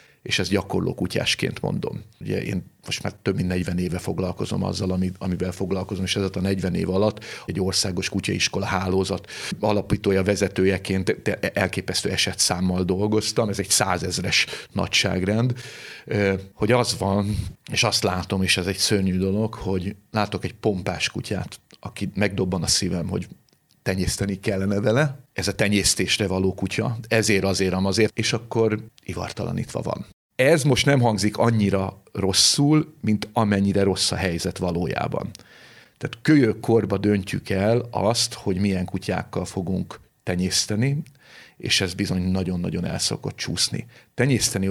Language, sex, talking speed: Hungarian, male, 135 wpm